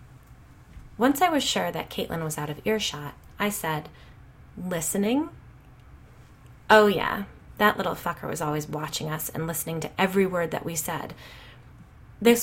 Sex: female